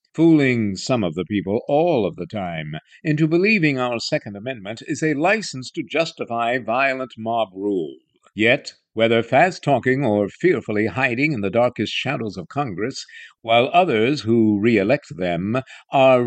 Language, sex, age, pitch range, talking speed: English, male, 50-69, 115-160 Hz, 150 wpm